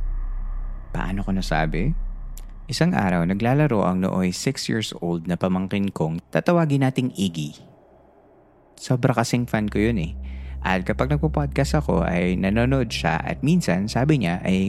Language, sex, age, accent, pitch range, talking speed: Filipino, male, 20-39, native, 85-130 Hz, 145 wpm